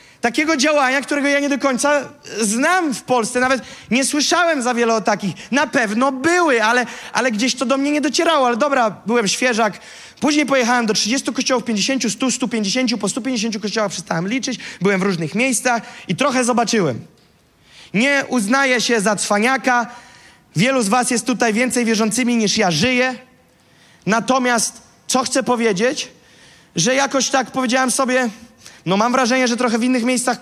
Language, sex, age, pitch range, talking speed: Polish, male, 20-39, 215-260 Hz, 165 wpm